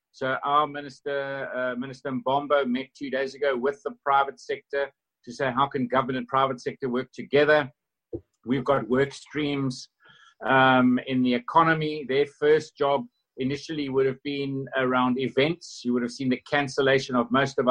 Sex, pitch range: male, 130-150 Hz